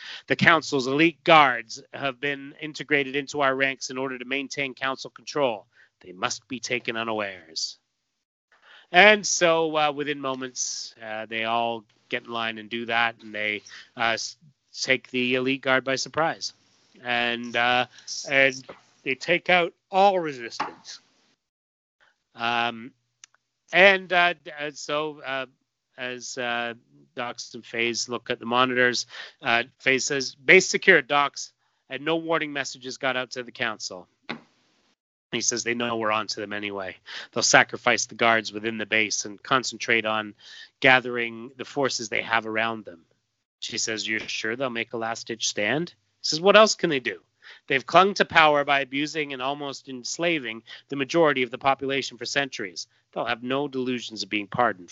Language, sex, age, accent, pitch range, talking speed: English, male, 30-49, American, 115-145 Hz, 160 wpm